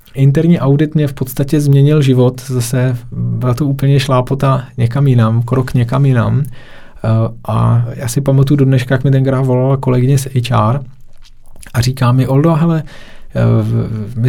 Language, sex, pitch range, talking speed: Czech, male, 115-140 Hz, 150 wpm